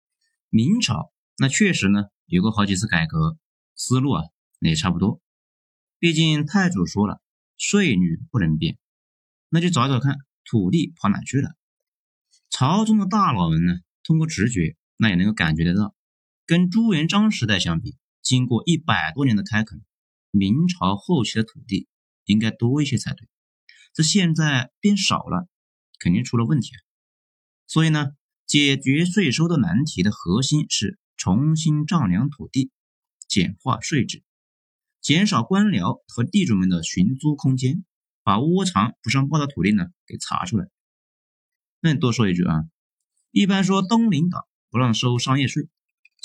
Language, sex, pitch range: Chinese, male, 110-180 Hz